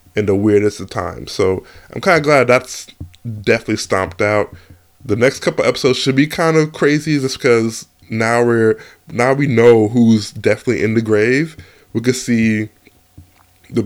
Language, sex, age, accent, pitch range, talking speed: English, male, 20-39, American, 105-135 Hz, 175 wpm